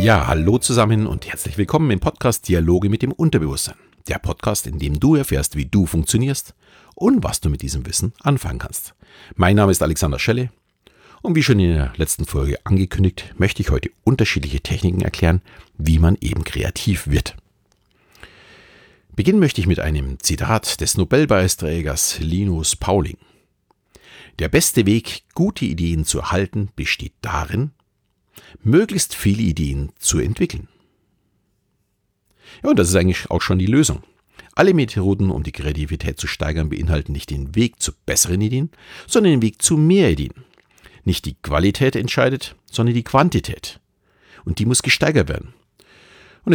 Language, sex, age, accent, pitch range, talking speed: German, male, 50-69, German, 80-115 Hz, 150 wpm